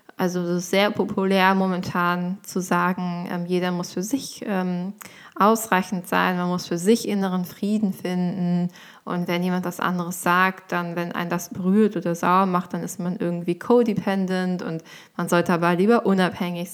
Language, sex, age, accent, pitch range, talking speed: German, female, 20-39, German, 180-205 Hz, 170 wpm